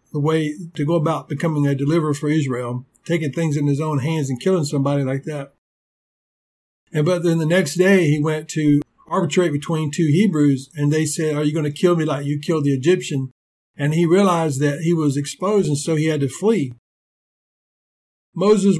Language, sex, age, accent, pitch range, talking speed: English, male, 50-69, American, 150-175 Hz, 195 wpm